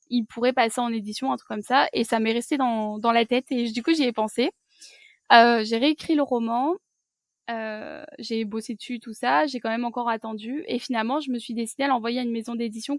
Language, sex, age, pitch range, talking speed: French, female, 20-39, 230-265 Hz, 240 wpm